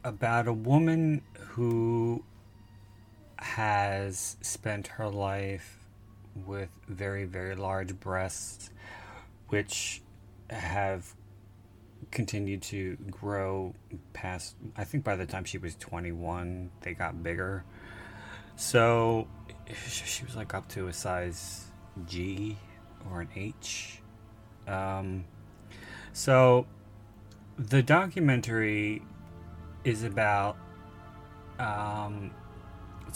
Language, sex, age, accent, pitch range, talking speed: English, male, 30-49, American, 95-110 Hz, 90 wpm